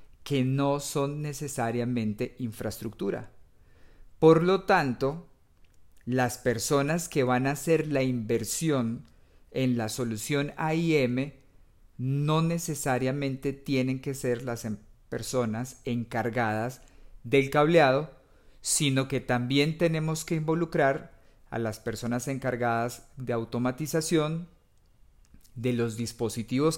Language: English